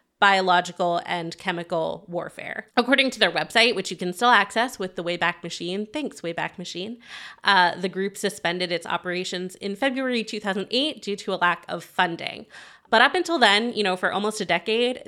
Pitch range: 175-220 Hz